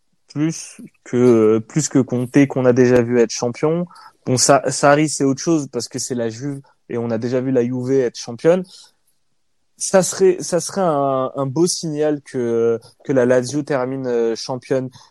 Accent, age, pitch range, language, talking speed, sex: French, 20-39, 125-155 Hz, French, 185 wpm, male